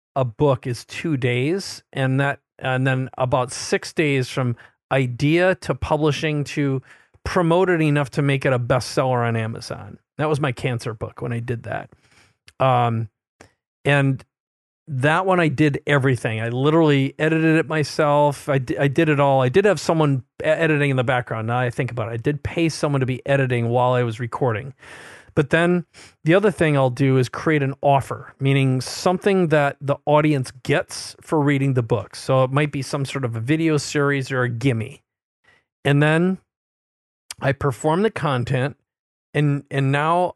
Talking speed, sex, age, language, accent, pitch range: 180 wpm, male, 40-59, English, American, 130-155 Hz